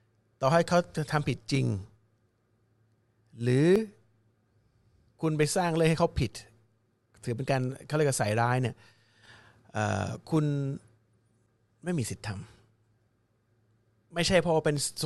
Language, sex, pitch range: Thai, male, 110-160 Hz